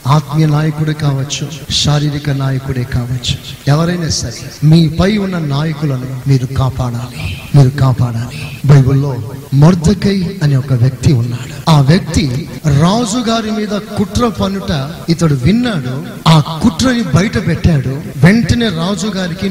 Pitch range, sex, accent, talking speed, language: 145-195 Hz, male, native, 110 wpm, Telugu